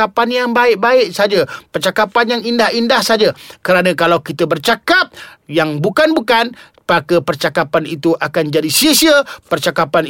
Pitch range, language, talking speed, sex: 165-230 Hz, Malay, 125 wpm, male